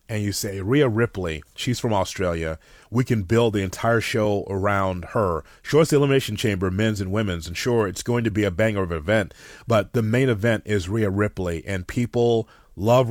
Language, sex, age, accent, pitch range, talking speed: English, male, 30-49, American, 100-125 Hz, 205 wpm